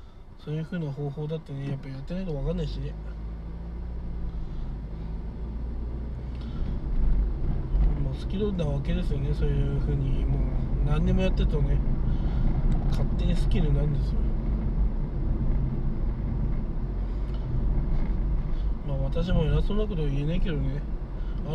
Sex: male